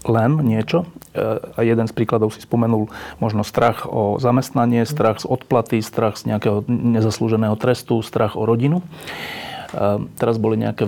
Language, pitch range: Slovak, 110-125 Hz